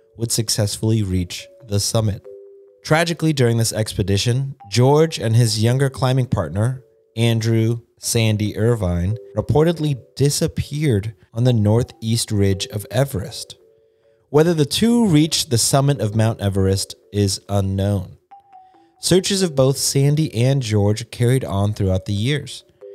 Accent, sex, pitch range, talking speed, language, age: American, male, 105-135 Hz, 125 wpm, English, 20-39